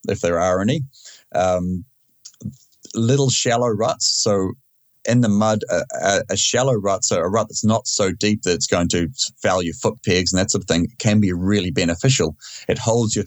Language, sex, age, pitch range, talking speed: English, male, 30-49, 95-115 Hz, 200 wpm